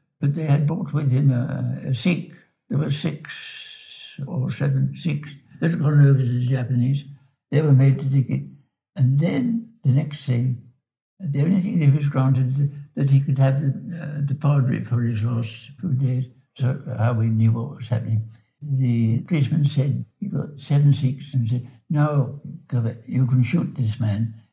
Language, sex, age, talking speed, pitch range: English, male, 60-79, 170 wpm, 125-150 Hz